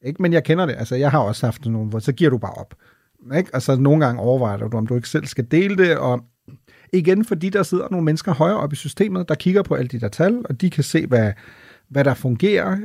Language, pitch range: Danish, 125-165 Hz